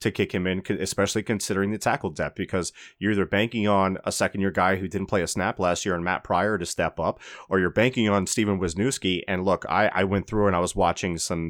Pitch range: 95-110 Hz